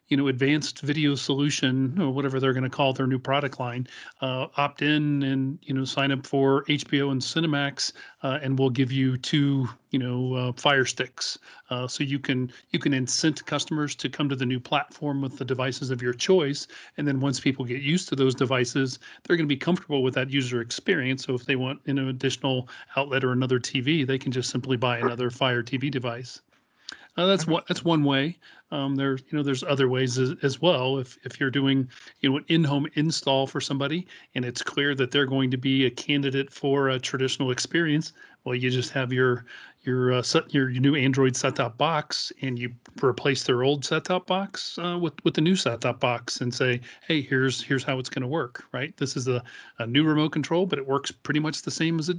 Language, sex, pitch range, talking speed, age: English, male, 130-145 Hz, 220 wpm, 40-59